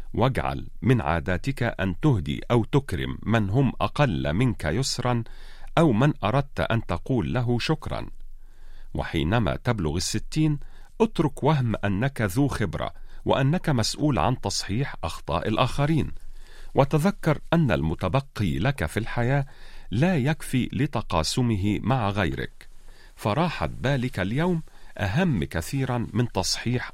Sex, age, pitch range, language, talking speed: male, 40-59, 95-135 Hz, Arabic, 115 wpm